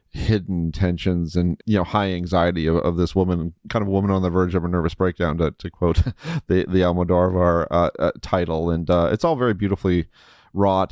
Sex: male